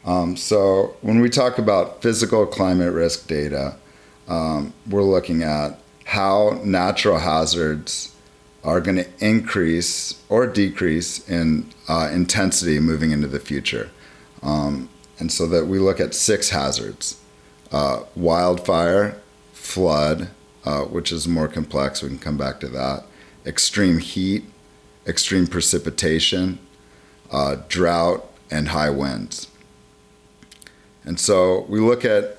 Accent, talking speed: American, 125 wpm